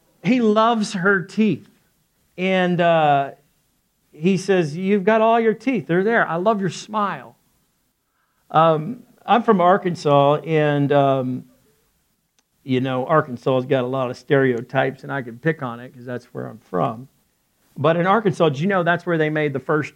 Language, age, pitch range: English, 50-69, 140-190 Hz